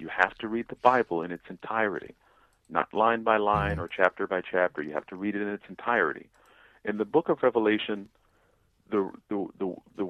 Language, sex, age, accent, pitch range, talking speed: English, male, 50-69, American, 95-120 Hz, 200 wpm